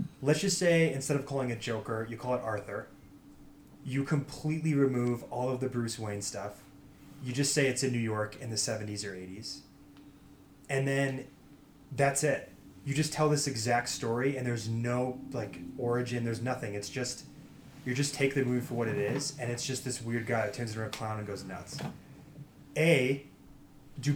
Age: 20-39